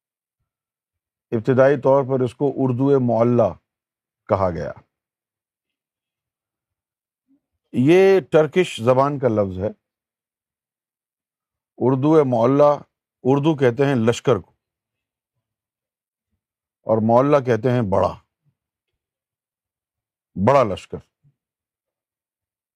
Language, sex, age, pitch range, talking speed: Urdu, male, 50-69, 110-150 Hz, 75 wpm